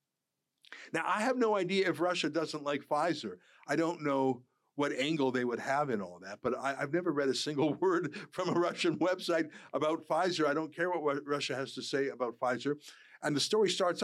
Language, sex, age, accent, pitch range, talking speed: English, male, 50-69, American, 125-165 Hz, 210 wpm